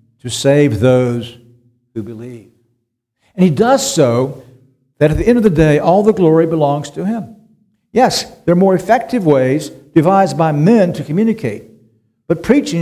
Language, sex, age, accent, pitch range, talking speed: English, male, 60-79, American, 120-170 Hz, 165 wpm